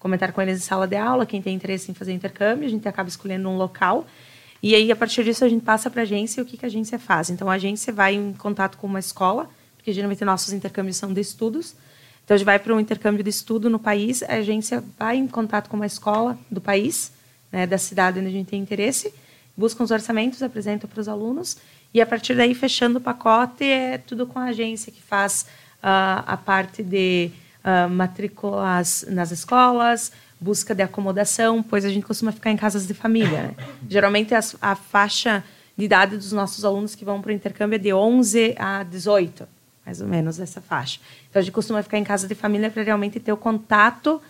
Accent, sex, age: Brazilian, female, 20-39